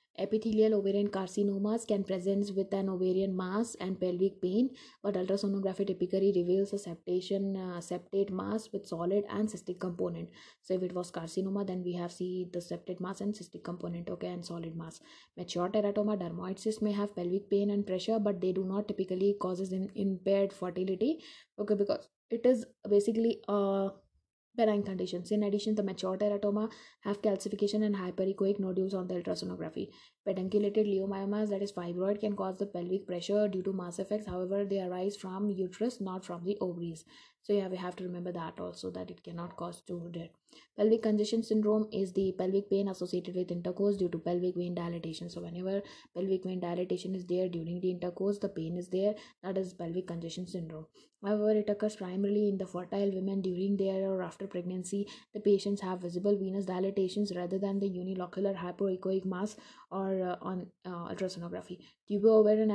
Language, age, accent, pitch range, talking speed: English, 20-39, Indian, 180-205 Hz, 180 wpm